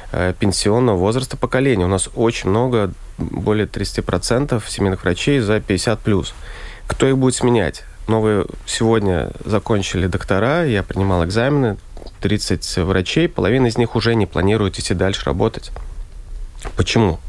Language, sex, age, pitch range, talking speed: Russian, male, 30-49, 90-115 Hz, 140 wpm